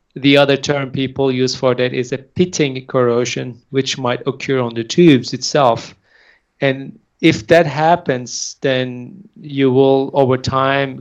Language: English